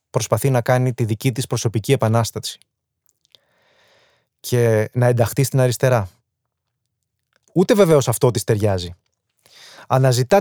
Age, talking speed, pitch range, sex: 20-39, 110 wpm, 110-135 Hz, male